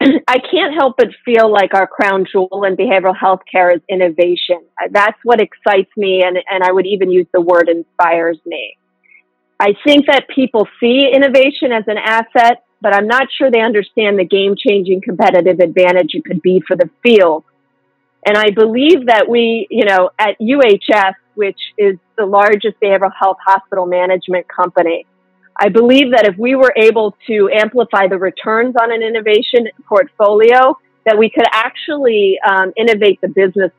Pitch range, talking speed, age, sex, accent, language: 190-240 Hz, 170 wpm, 40-59, female, American, English